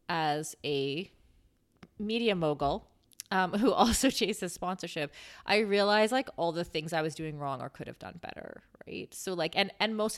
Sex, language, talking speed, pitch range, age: female, English, 175 wpm, 155-215 Hz, 20-39